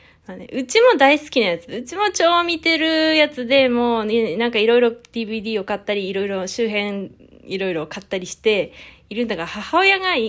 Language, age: Japanese, 20-39